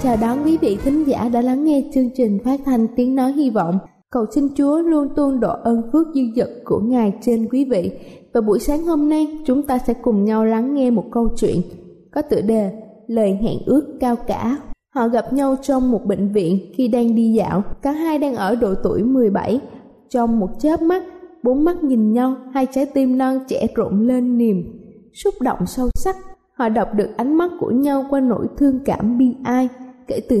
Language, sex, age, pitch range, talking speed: Vietnamese, female, 20-39, 225-275 Hz, 215 wpm